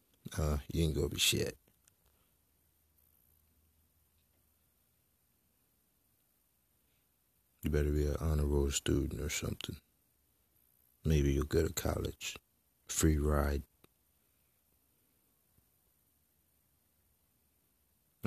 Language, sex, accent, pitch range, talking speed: English, male, American, 75-90 Hz, 75 wpm